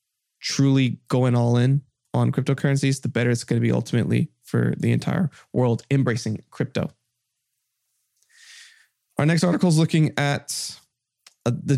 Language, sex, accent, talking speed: English, male, American, 140 wpm